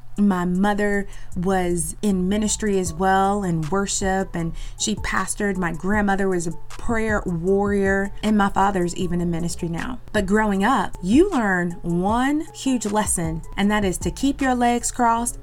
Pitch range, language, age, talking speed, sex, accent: 175-210 Hz, English, 30-49, 160 wpm, female, American